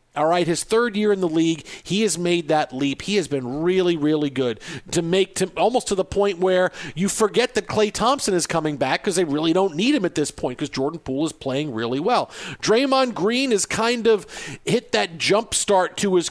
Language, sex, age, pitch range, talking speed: English, male, 50-69, 155-195 Hz, 230 wpm